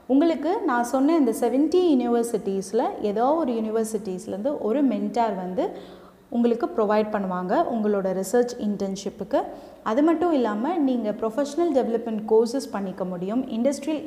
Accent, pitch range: native, 205-275 Hz